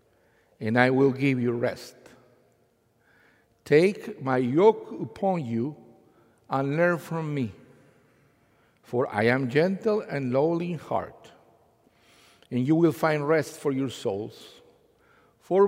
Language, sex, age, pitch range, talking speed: English, male, 50-69, 130-190 Hz, 125 wpm